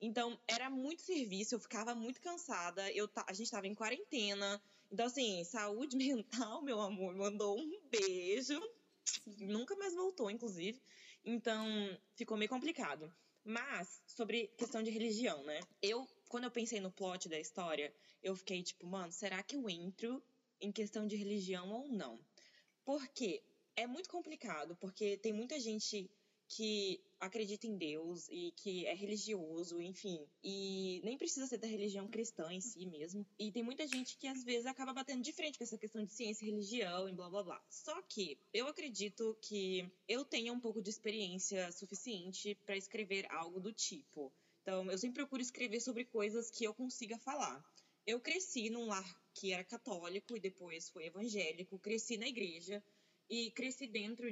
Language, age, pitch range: Portuguese, 20-39, 195-245 Hz